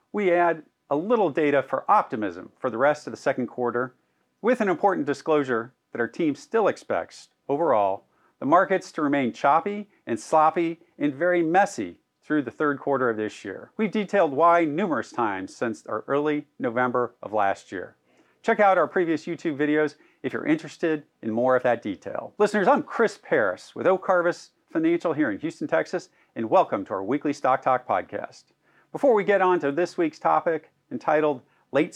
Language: English